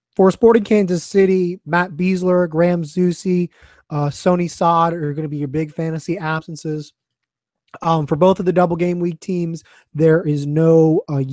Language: English